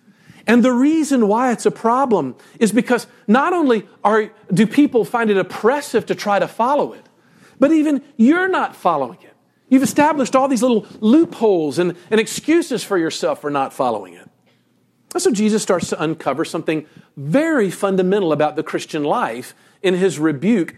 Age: 50-69